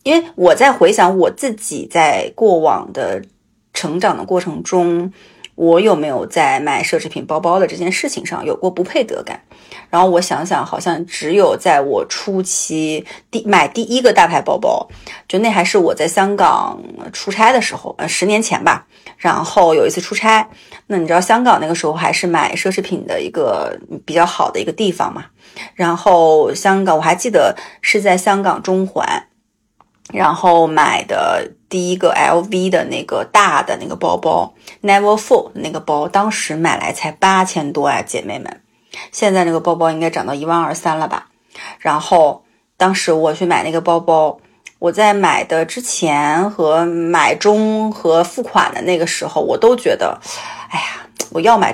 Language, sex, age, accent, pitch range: Chinese, female, 30-49, native, 165-210 Hz